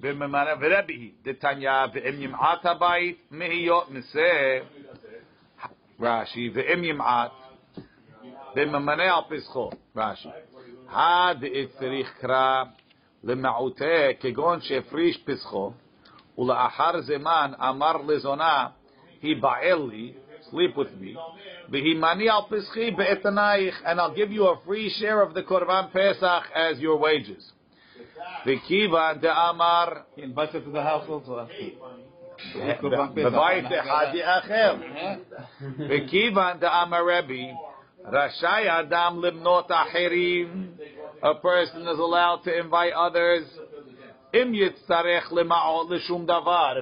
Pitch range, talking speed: 140-180 Hz, 60 wpm